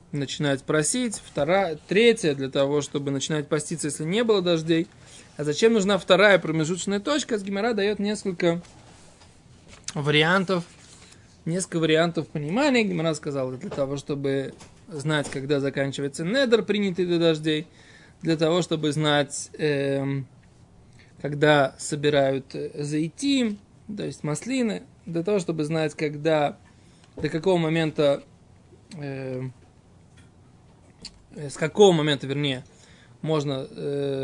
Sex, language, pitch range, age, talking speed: male, Russian, 140-180 Hz, 20-39, 110 wpm